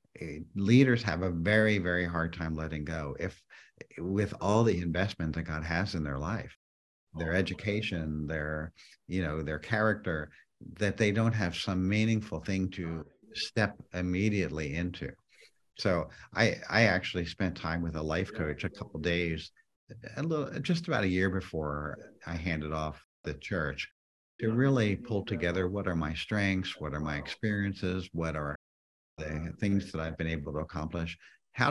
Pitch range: 80-100 Hz